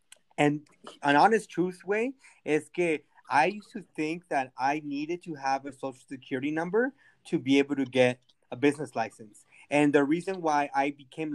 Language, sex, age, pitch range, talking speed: English, male, 20-39, 135-160 Hz, 180 wpm